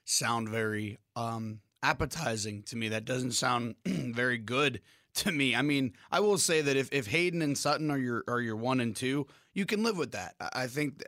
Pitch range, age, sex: 120-145 Hz, 30-49, male